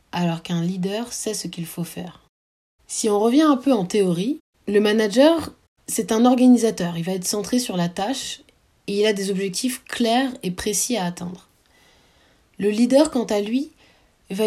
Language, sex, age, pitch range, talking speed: French, female, 20-39, 175-235 Hz, 180 wpm